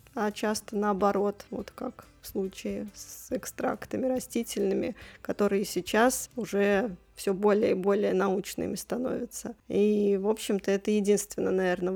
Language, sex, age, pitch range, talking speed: Russian, female, 20-39, 195-235 Hz, 125 wpm